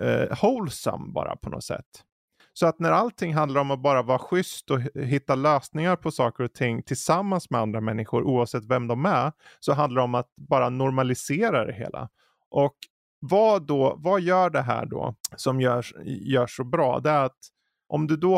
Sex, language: male, Swedish